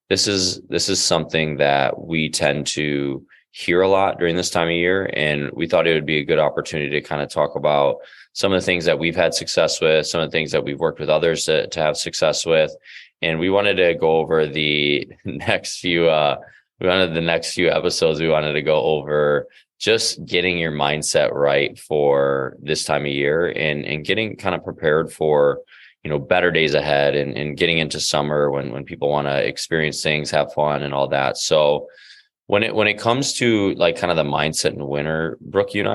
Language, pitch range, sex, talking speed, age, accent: English, 75-90 Hz, male, 220 wpm, 20-39, American